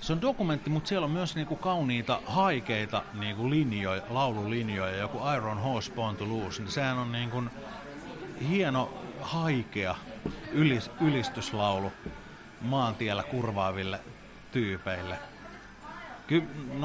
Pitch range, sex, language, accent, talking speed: 105-130 Hz, male, Finnish, native, 105 wpm